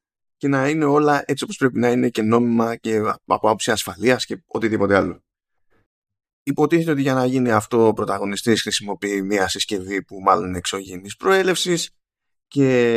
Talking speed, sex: 160 wpm, male